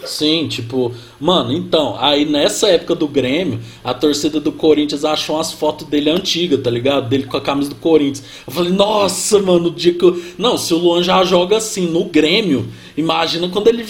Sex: male